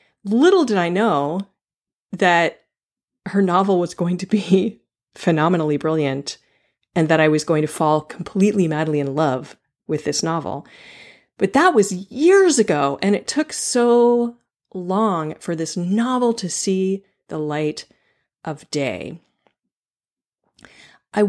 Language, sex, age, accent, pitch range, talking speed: English, female, 40-59, American, 170-240 Hz, 130 wpm